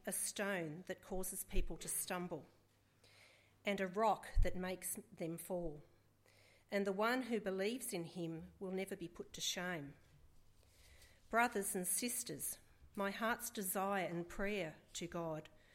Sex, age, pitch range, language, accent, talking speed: female, 40-59, 160-205 Hz, English, Australian, 140 wpm